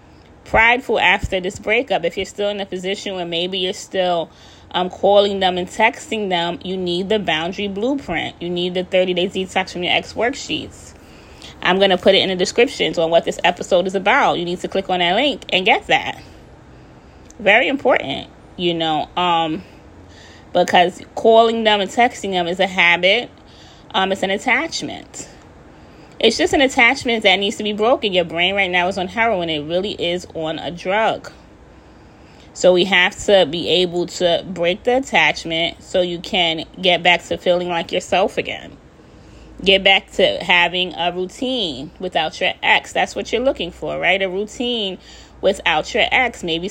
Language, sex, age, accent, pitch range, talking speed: English, female, 20-39, American, 170-200 Hz, 180 wpm